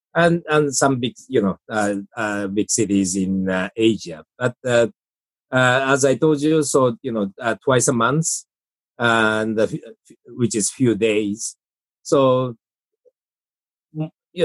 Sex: male